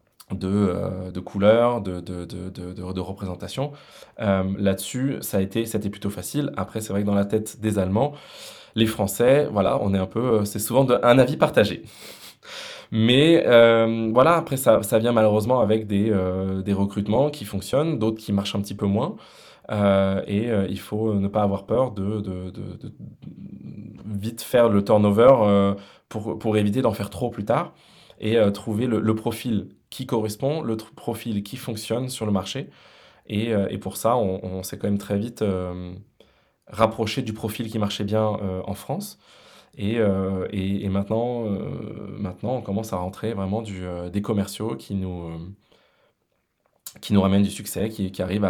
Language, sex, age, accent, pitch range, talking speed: English, male, 20-39, French, 95-110 Hz, 190 wpm